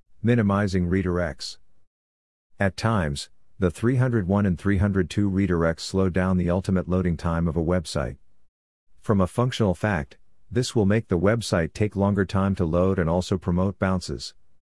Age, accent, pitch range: 50-69, American, 85-105 Hz